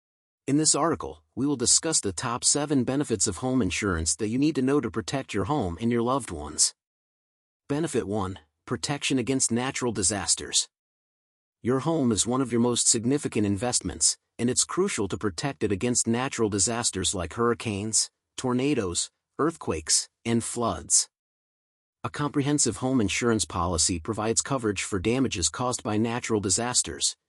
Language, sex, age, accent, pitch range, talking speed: English, male, 40-59, American, 105-130 Hz, 150 wpm